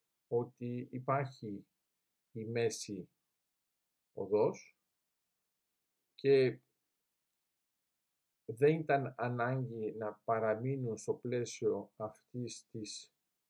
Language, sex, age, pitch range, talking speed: Greek, male, 50-69, 115-145 Hz, 65 wpm